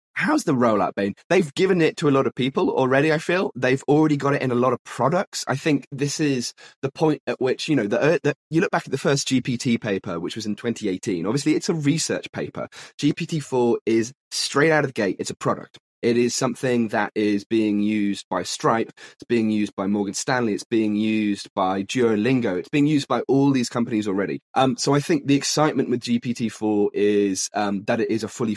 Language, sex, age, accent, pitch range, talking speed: English, male, 20-39, British, 105-140 Hz, 220 wpm